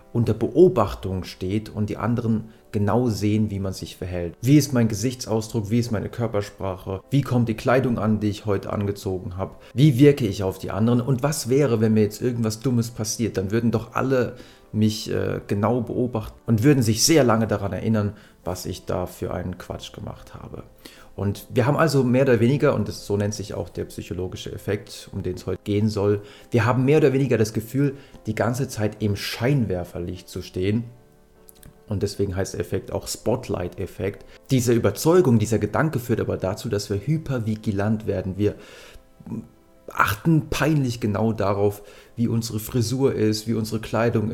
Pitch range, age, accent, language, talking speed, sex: 100-120 Hz, 30-49, German, German, 180 wpm, male